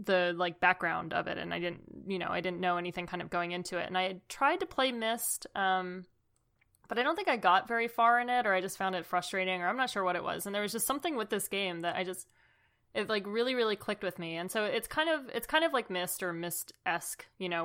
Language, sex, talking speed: English, female, 280 wpm